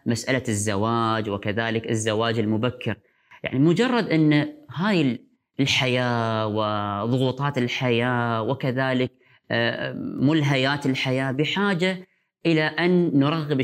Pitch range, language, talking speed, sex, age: 115-155 Hz, Arabic, 85 wpm, female, 20-39